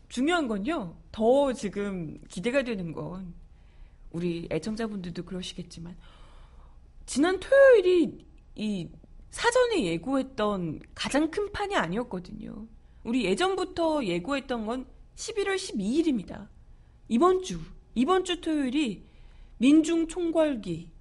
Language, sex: Korean, female